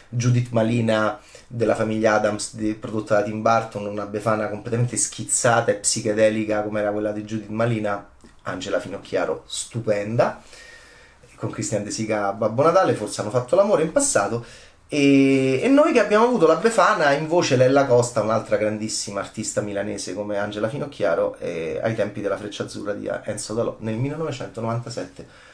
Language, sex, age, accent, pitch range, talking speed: Italian, male, 30-49, native, 110-175 Hz, 155 wpm